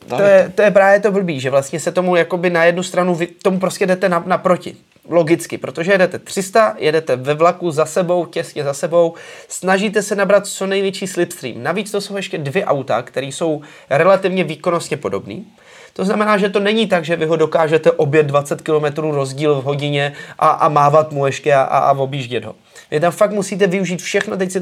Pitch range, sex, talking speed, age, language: 150-195 Hz, male, 200 wpm, 30-49, Czech